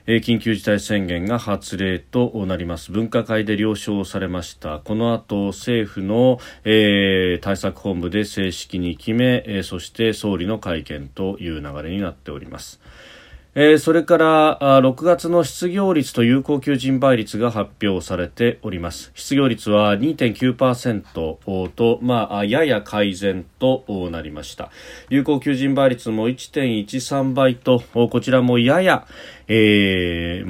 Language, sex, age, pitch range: Japanese, male, 40-59, 95-125 Hz